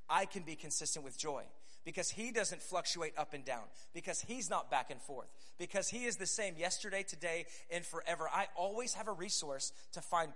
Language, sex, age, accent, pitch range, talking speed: English, male, 30-49, American, 160-195 Hz, 205 wpm